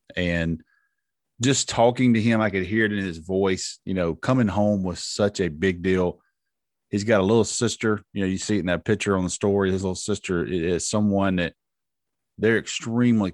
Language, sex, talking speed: English, male, 200 wpm